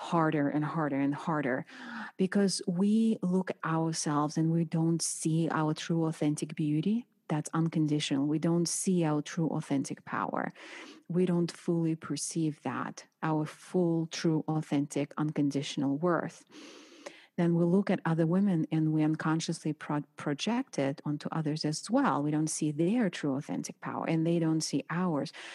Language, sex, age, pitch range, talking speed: English, female, 40-59, 160-235 Hz, 155 wpm